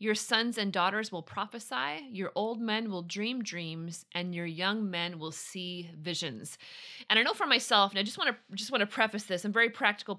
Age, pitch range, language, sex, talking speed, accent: 30-49, 180-235 Hz, English, female, 225 wpm, American